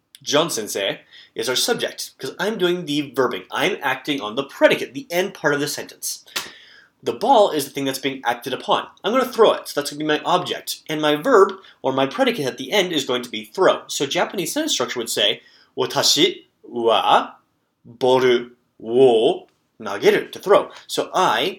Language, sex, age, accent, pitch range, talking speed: English, male, 30-49, American, 125-185 Hz, 195 wpm